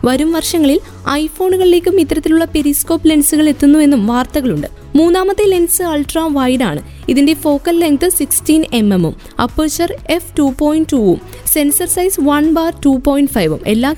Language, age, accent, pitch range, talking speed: Malayalam, 20-39, native, 275-330 Hz, 130 wpm